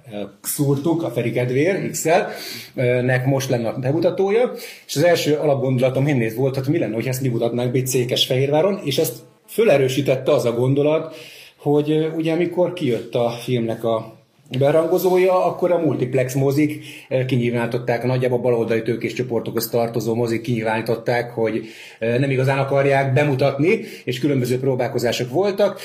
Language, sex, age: Hungarian, male, 30-49